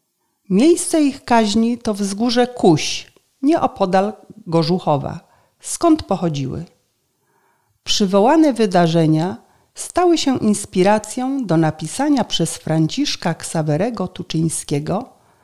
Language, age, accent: Polish, 40-59, native